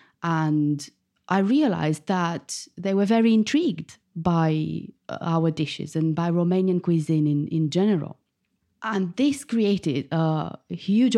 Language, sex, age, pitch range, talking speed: English, female, 30-49, 160-200 Hz, 125 wpm